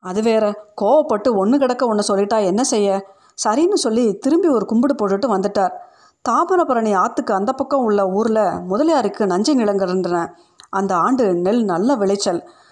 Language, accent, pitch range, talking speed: Tamil, native, 190-255 Hz, 140 wpm